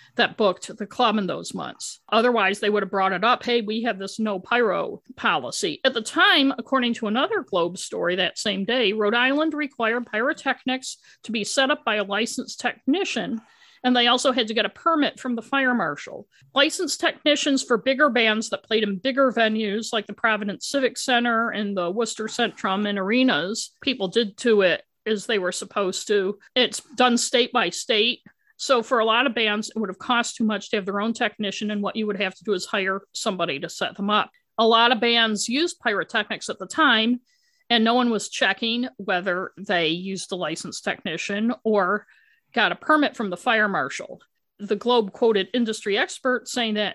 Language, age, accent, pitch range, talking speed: English, 50-69, American, 205-250 Hz, 200 wpm